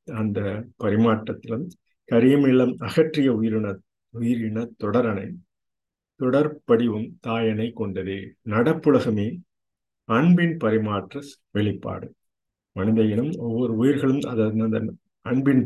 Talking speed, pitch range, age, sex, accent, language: 75 wpm, 110-130 Hz, 50-69, male, native, Tamil